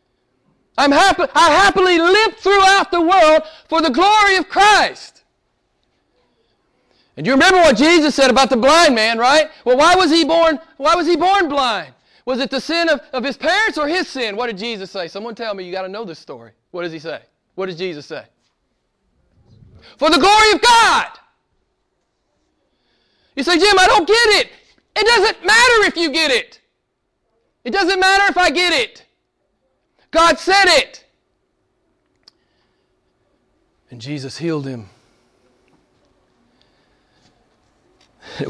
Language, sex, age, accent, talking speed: English, male, 40-59, American, 150 wpm